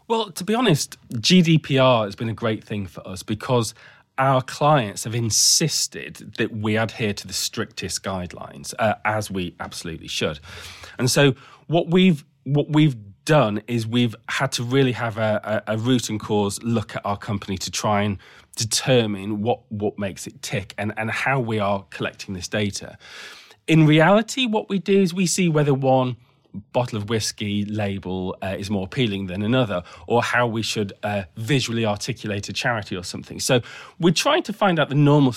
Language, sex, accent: English, male, British